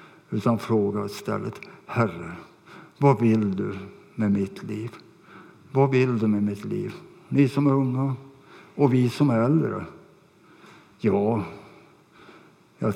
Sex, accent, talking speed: male, Norwegian, 125 wpm